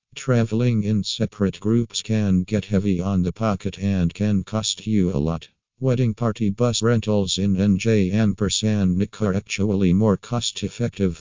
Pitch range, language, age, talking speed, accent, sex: 95-110 Hz, English, 50-69, 150 wpm, American, male